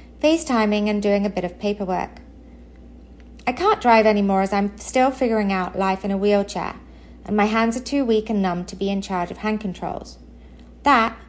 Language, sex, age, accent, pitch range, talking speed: English, female, 30-49, British, 175-220 Hz, 190 wpm